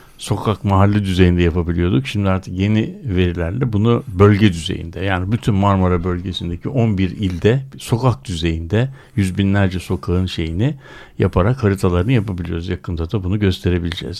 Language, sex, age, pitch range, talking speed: Turkish, male, 60-79, 95-125 Hz, 125 wpm